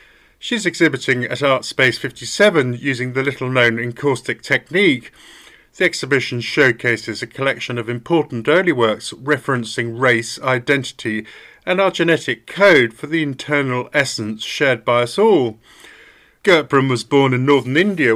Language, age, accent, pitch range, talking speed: English, 50-69, British, 120-150 Hz, 135 wpm